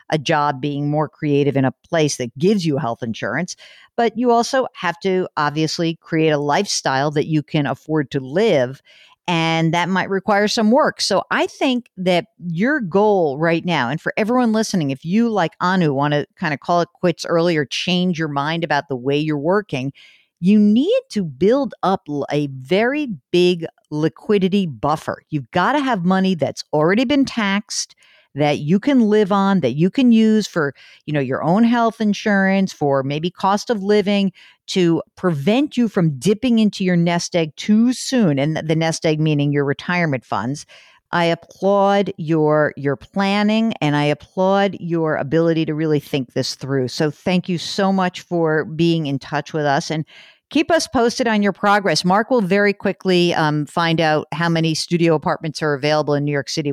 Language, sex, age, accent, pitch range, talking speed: English, female, 50-69, American, 150-205 Hz, 185 wpm